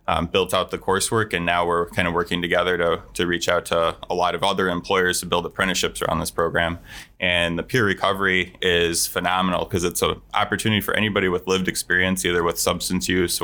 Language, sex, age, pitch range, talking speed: English, male, 20-39, 85-95 Hz, 210 wpm